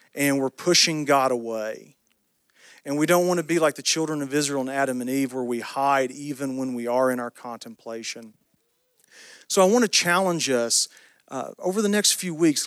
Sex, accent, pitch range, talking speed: male, American, 125-165 Hz, 200 wpm